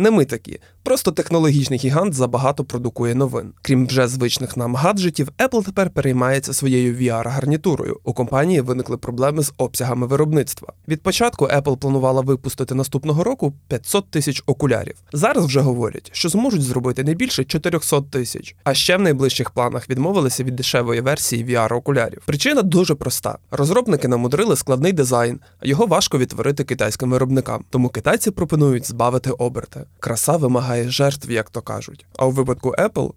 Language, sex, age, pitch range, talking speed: Ukrainian, male, 20-39, 125-155 Hz, 150 wpm